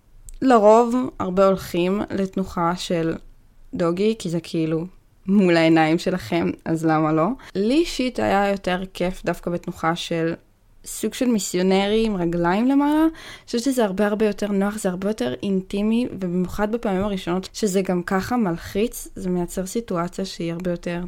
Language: Hebrew